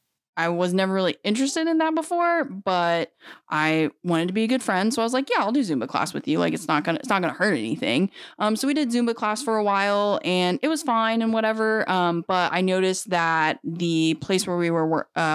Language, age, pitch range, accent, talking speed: English, 20-39, 165-215 Hz, American, 255 wpm